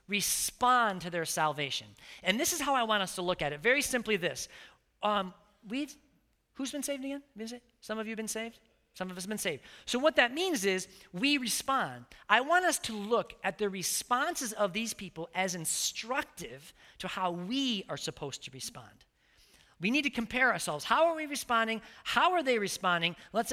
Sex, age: male, 40-59